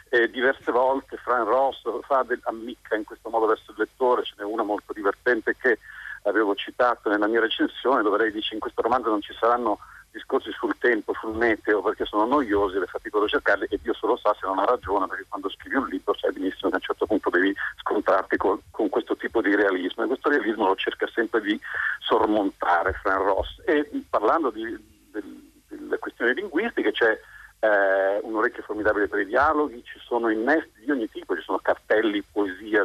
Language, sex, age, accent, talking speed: Italian, male, 50-69, native, 210 wpm